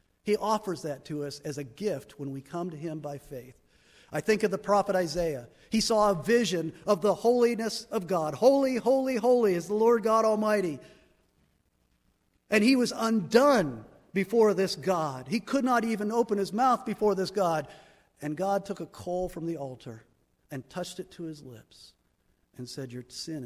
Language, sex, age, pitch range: English, male, 50-69, 135-195 Hz